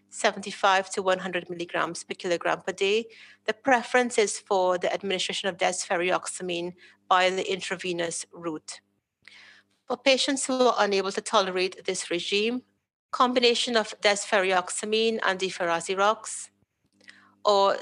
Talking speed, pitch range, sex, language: 120 wpm, 185-225 Hz, female, English